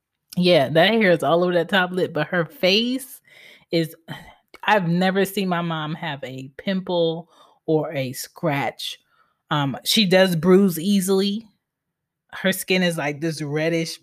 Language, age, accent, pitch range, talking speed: English, 20-39, American, 155-195 Hz, 150 wpm